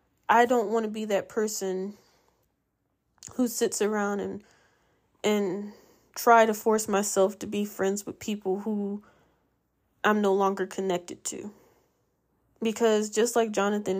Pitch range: 195-225 Hz